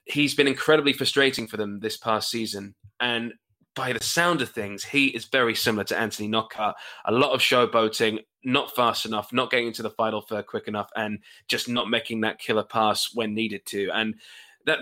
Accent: British